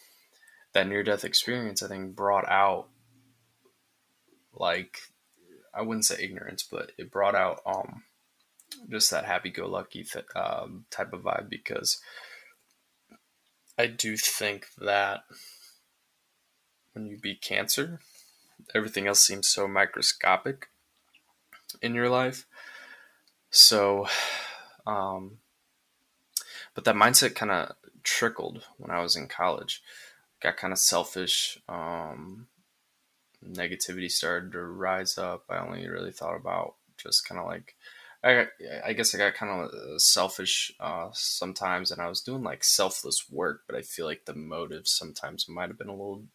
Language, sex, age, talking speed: English, male, 20-39, 130 wpm